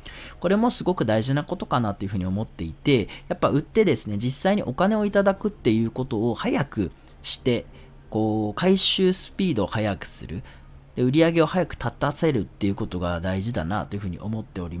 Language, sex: Japanese, male